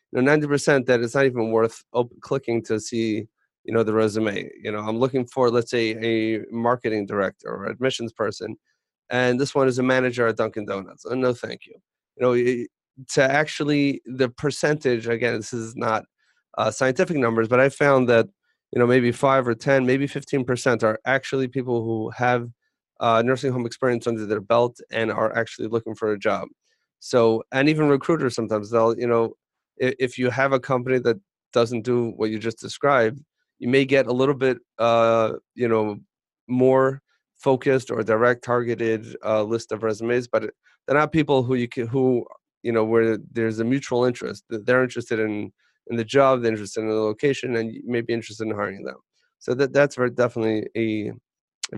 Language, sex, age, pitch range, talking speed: English, male, 30-49, 115-130 Hz, 190 wpm